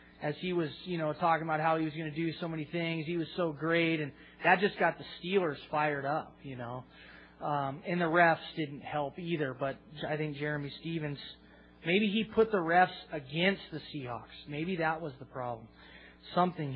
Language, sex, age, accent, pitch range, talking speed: English, male, 20-39, American, 145-185 Hz, 200 wpm